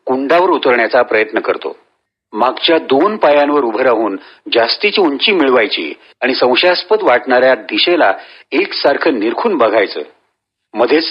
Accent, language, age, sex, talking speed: native, Marathi, 40-59, male, 110 wpm